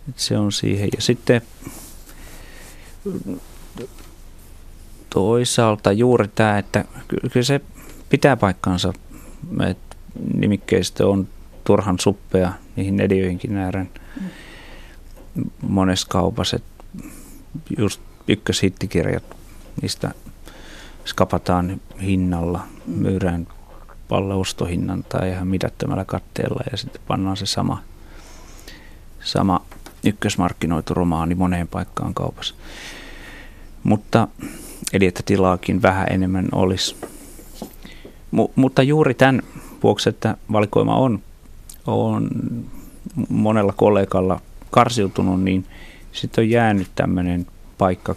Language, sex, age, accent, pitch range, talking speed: Finnish, male, 30-49, native, 90-105 Hz, 85 wpm